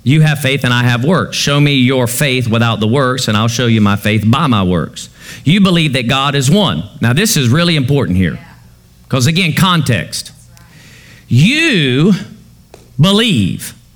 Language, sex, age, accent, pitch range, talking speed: English, male, 50-69, American, 125-210 Hz, 170 wpm